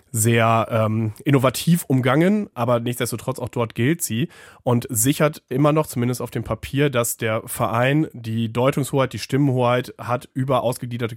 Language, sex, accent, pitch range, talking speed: German, male, German, 120-145 Hz, 150 wpm